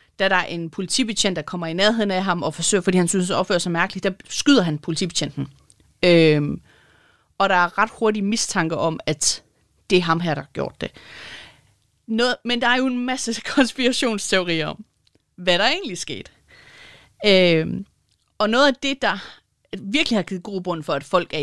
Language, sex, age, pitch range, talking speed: Danish, female, 30-49, 165-215 Hz, 195 wpm